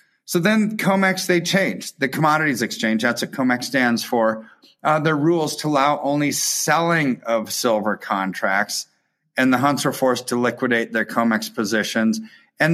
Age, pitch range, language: 30-49, 115-155 Hz, English